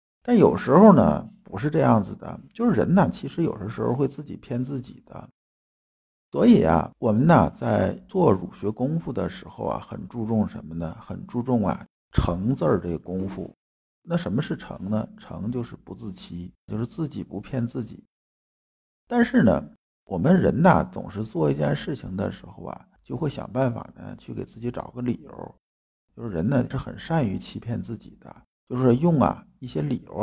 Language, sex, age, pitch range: Chinese, male, 50-69, 95-125 Hz